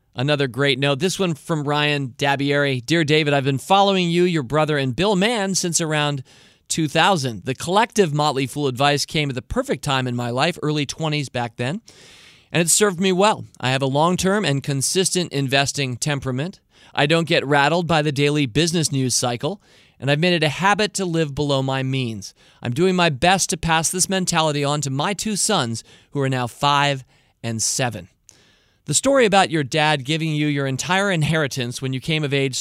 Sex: male